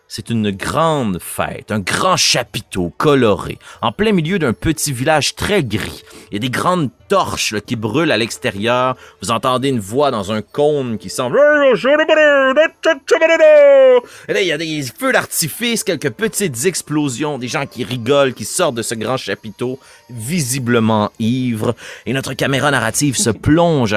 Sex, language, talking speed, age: male, French, 160 wpm, 30-49